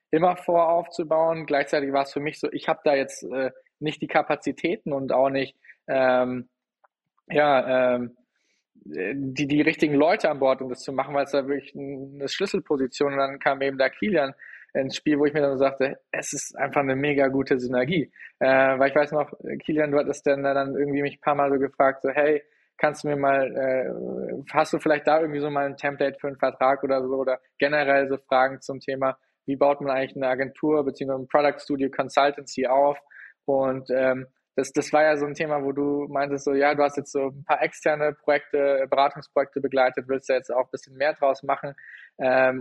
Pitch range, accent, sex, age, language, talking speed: 135-145 Hz, German, male, 20-39, English, 210 wpm